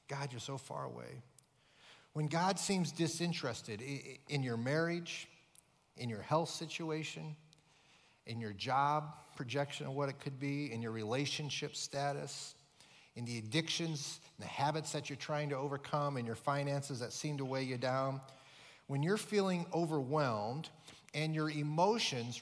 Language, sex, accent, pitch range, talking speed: English, male, American, 130-160 Hz, 145 wpm